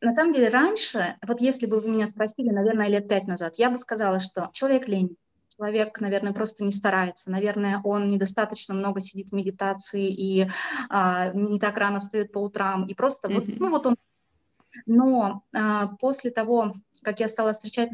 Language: Russian